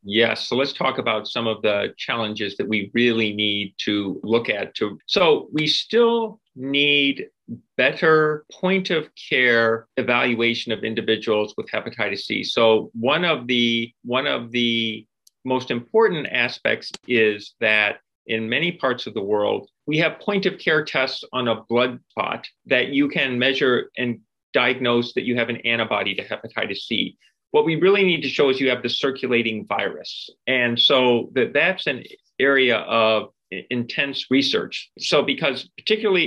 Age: 40-59